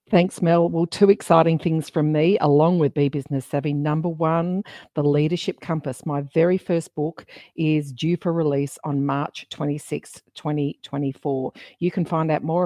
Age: 50-69